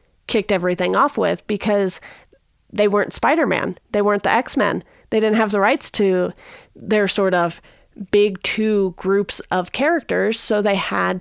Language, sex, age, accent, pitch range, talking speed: English, female, 30-49, American, 195-245 Hz, 155 wpm